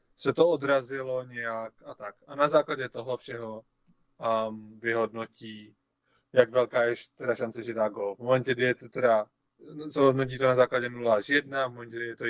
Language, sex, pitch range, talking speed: Czech, male, 115-135 Hz, 180 wpm